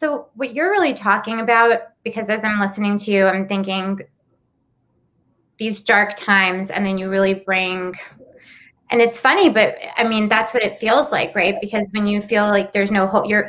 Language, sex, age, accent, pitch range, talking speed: English, female, 20-39, American, 185-215 Hz, 185 wpm